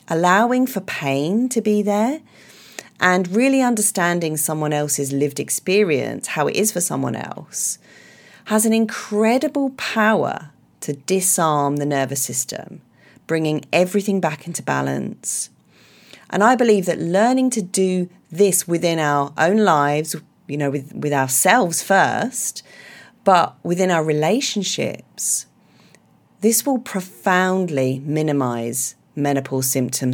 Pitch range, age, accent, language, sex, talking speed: 145-215 Hz, 40-59, British, English, female, 120 wpm